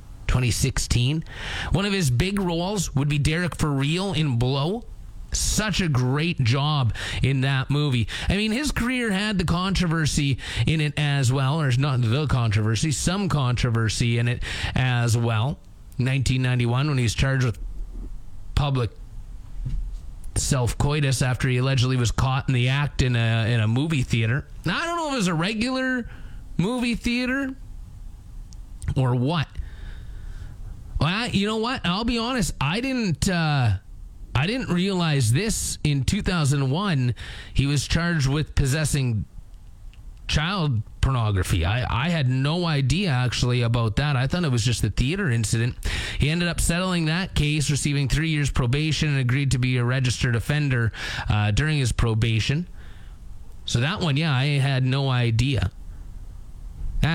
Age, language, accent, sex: 30-49, English, American, male